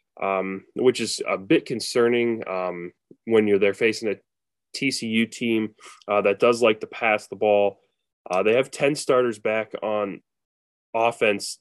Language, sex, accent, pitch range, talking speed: English, male, American, 115-185 Hz, 155 wpm